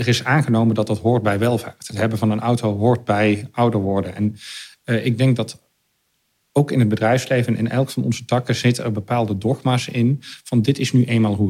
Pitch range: 110-125 Hz